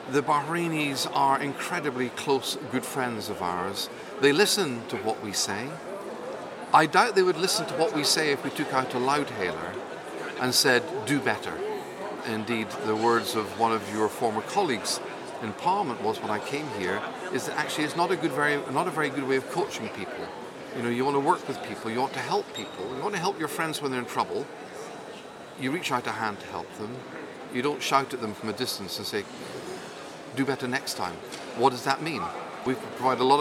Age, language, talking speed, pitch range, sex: 50-69, English, 215 wpm, 130-175 Hz, male